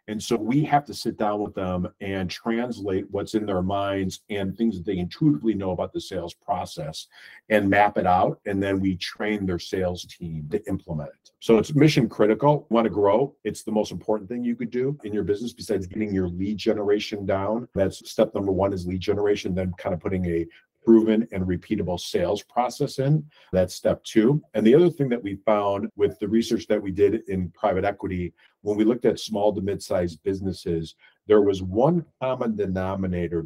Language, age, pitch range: English, 50-69, 90-110 Hz